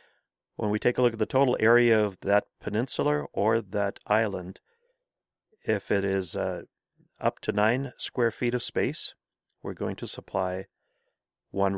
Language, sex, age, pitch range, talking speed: English, male, 40-59, 100-115 Hz, 160 wpm